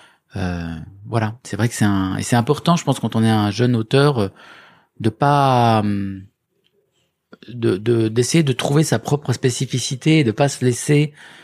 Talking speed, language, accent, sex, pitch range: 175 wpm, French, French, male, 110-140 Hz